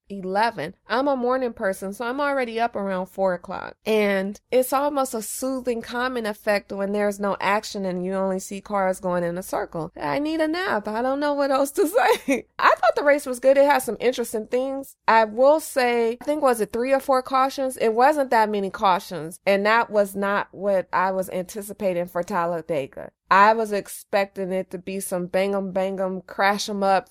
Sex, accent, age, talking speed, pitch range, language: female, American, 20-39, 200 wpm, 190-240 Hz, English